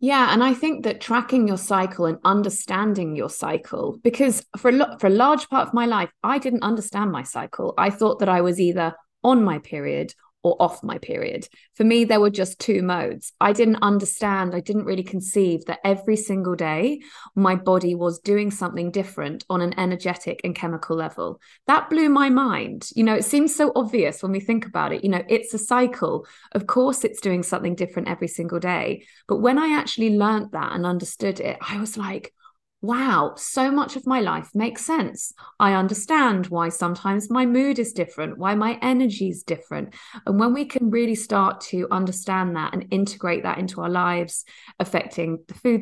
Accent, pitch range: British, 180-235 Hz